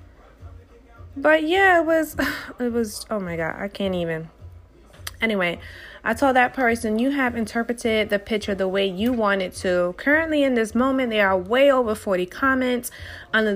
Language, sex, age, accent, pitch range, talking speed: English, female, 20-39, American, 195-255 Hz, 175 wpm